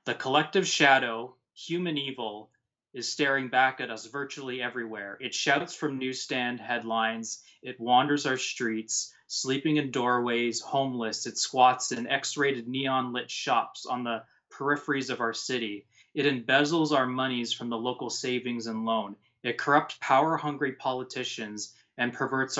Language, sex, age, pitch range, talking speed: English, male, 20-39, 115-135 Hz, 140 wpm